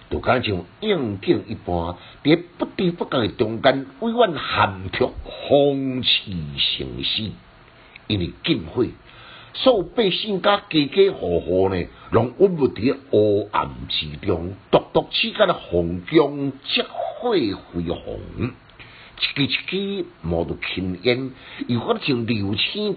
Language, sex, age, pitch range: Chinese, male, 60-79, 90-145 Hz